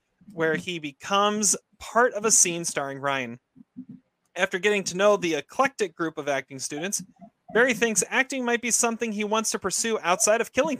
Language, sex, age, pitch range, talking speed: English, male, 30-49, 140-195 Hz, 180 wpm